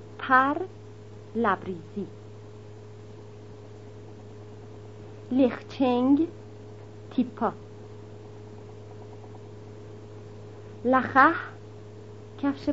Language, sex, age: Persian, female, 40-59